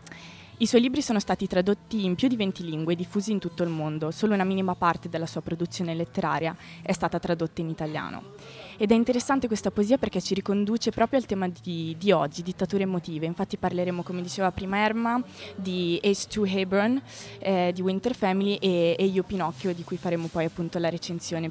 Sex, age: female, 20-39